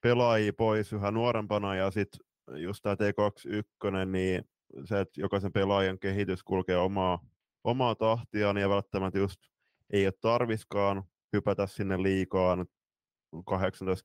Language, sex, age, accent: Finnish, male, 20-39, native